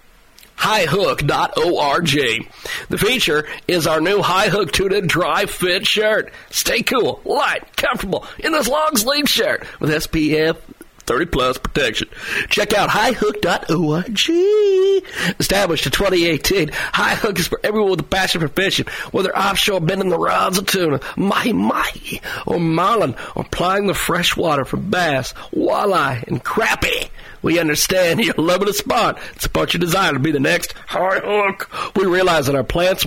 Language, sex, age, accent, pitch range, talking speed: English, male, 50-69, American, 155-210 Hz, 150 wpm